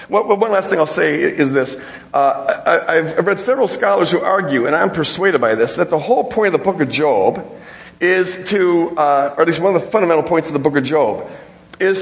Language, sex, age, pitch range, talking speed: English, male, 50-69, 155-190 Hz, 240 wpm